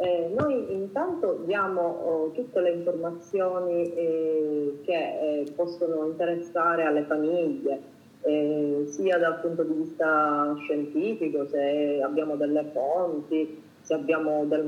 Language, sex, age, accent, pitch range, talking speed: Italian, female, 30-49, native, 150-180 Hz, 115 wpm